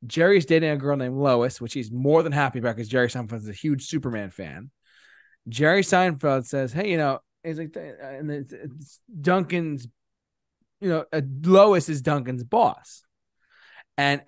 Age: 20-39